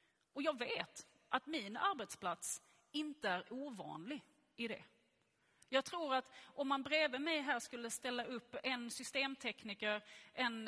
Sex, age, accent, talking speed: female, 30-49, native, 140 wpm